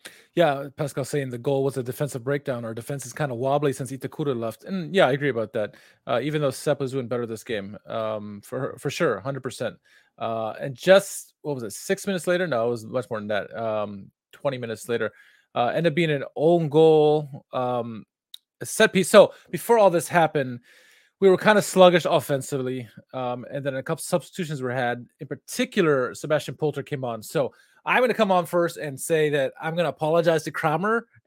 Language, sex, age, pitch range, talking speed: English, male, 20-39, 135-180 Hz, 210 wpm